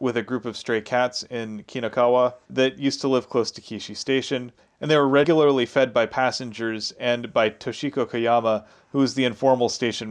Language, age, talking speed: English, 30-49, 190 wpm